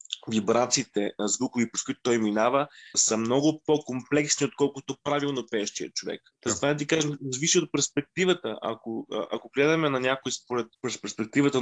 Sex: male